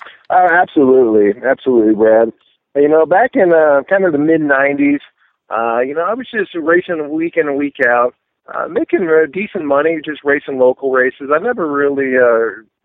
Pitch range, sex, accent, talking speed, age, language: 110-145 Hz, male, American, 180 wpm, 50-69, English